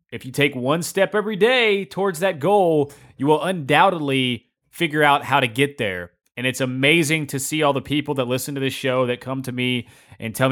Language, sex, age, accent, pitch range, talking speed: English, male, 20-39, American, 125-155 Hz, 215 wpm